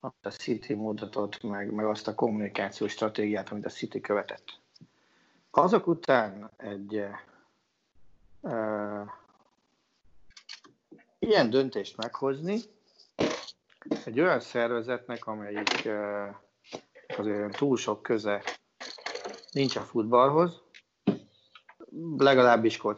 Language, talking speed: Hungarian, 90 wpm